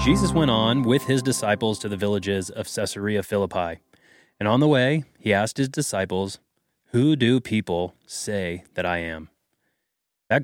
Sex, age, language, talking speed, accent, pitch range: male, 30-49, English, 160 wpm, American, 105-135 Hz